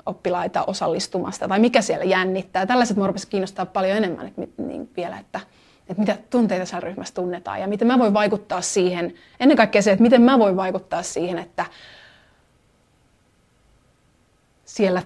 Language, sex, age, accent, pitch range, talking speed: Finnish, female, 30-49, native, 195-245 Hz, 150 wpm